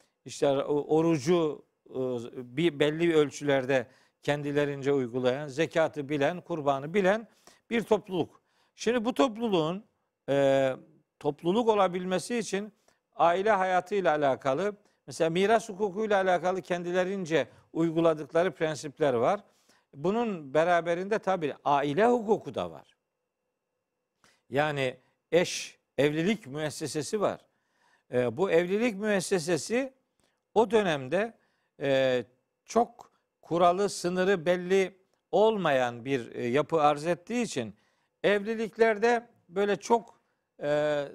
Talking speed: 95 wpm